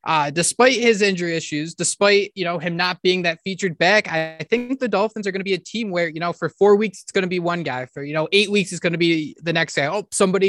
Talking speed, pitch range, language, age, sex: 285 wpm, 155-210 Hz, English, 20-39, male